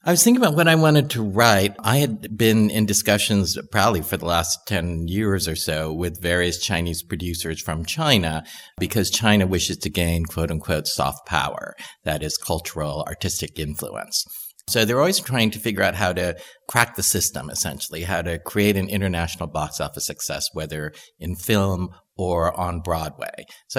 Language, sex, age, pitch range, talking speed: English, male, 50-69, 80-105 Hz, 175 wpm